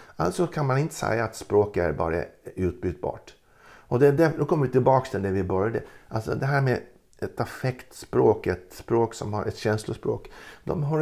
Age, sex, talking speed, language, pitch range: 50-69, male, 185 wpm, Swedish, 100-140 Hz